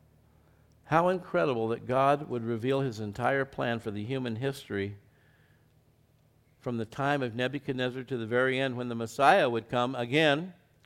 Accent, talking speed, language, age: American, 155 wpm, English, 50-69